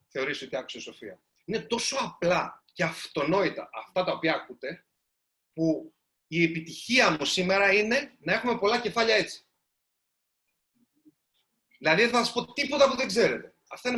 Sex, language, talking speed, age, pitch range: male, Greek, 155 wpm, 30-49, 185-245 Hz